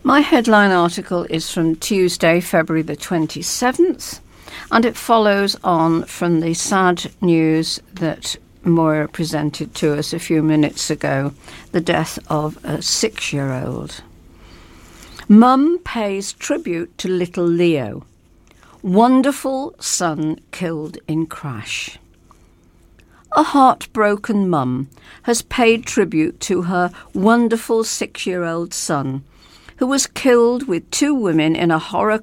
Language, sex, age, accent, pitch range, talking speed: English, female, 60-79, British, 155-215 Hz, 115 wpm